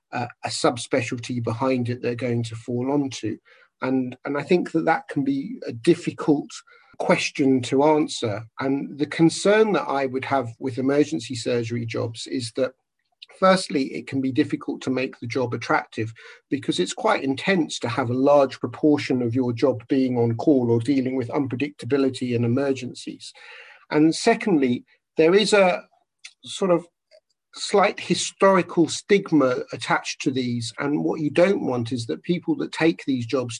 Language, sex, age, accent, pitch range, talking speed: English, male, 50-69, British, 120-150 Hz, 165 wpm